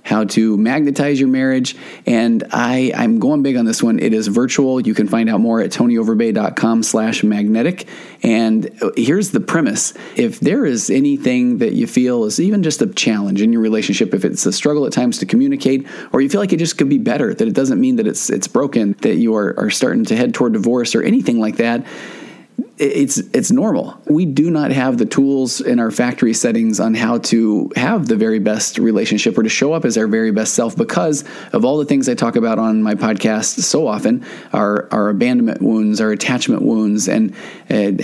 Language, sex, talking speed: English, male, 210 wpm